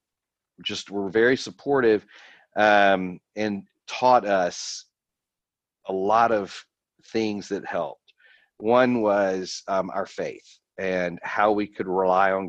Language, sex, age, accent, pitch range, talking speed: English, male, 40-59, American, 90-110 Hz, 120 wpm